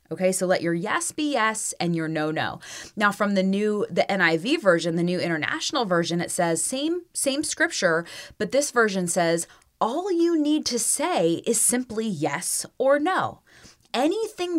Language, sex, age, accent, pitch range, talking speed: English, female, 20-39, American, 170-275 Hz, 175 wpm